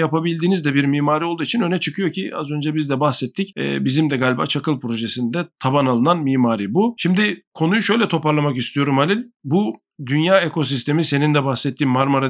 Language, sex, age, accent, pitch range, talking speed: Turkish, male, 40-59, native, 135-175 Hz, 175 wpm